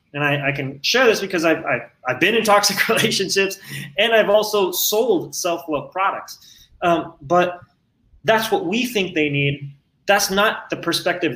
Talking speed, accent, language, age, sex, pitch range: 170 wpm, American, English, 20-39, male, 150-200 Hz